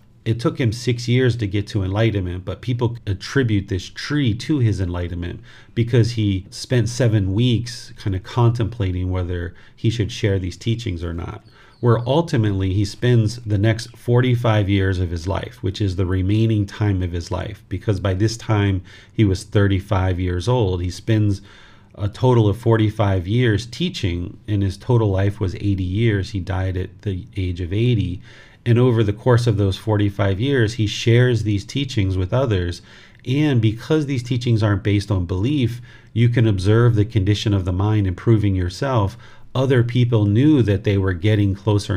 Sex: male